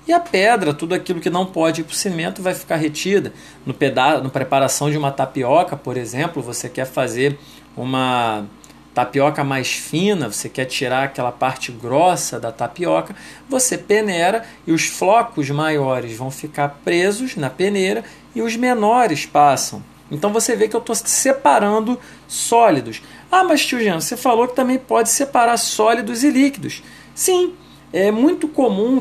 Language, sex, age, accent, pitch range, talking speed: Portuguese, male, 40-59, Brazilian, 145-230 Hz, 160 wpm